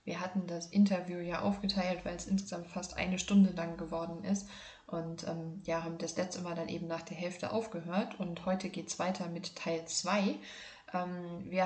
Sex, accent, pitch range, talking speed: female, German, 180-205 Hz, 190 wpm